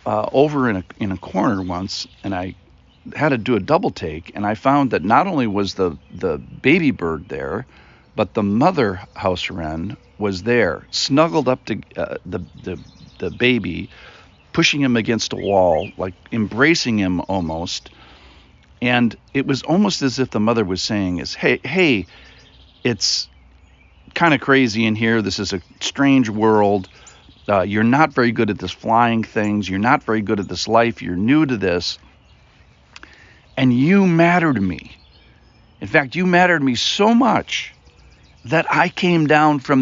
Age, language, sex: 50-69, English, male